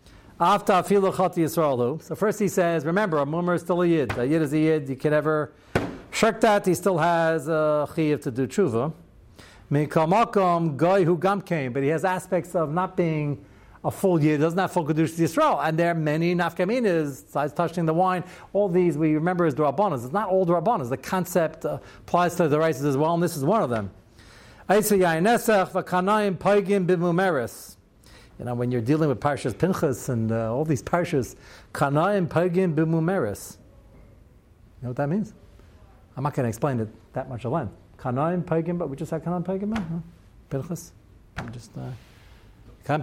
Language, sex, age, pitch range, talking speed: English, male, 60-79, 125-180 Hz, 180 wpm